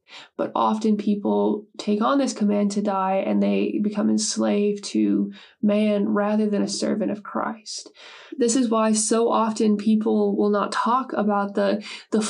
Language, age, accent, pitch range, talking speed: English, 20-39, American, 205-245 Hz, 160 wpm